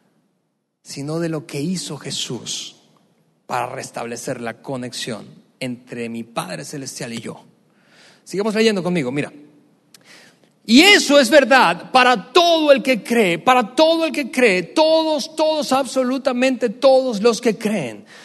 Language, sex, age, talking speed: Spanish, male, 40-59, 135 wpm